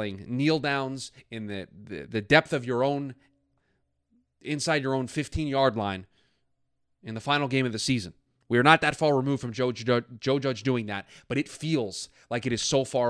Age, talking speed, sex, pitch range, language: 20-39, 195 wpm, male, 110-140 Hz, English